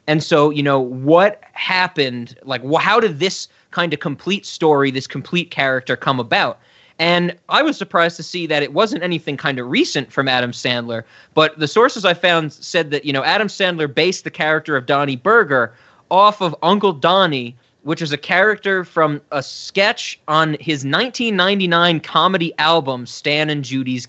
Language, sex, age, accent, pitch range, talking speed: English, male, 20-39, American, 135-175 Hz, 175 wpm